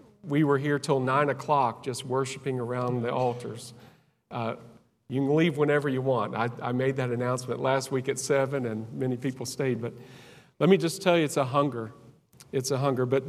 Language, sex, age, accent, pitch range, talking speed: English, male, 50-69, American, 125-155 Hz, 200 wpm